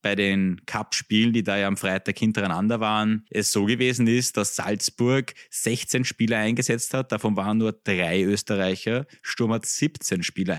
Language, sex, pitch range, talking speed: German, male, 95-115 Hz, 165 wpm